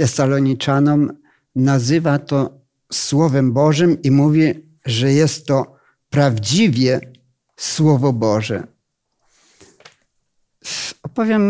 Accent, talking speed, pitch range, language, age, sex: native, 75 wpm, 130-170 Hz, Polish, 50-69, male